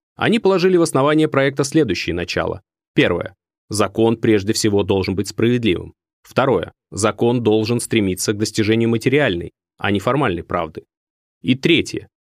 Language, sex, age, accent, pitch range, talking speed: Russian, male, 20-39, native, 105-145 Hz, 135 wpm